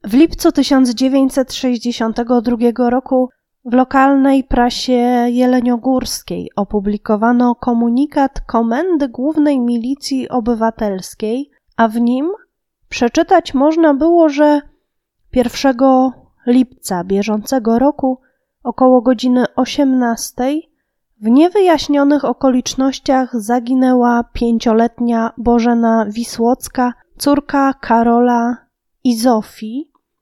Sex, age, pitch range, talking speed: female, 20-39, 235-285 Hz, 75 wpm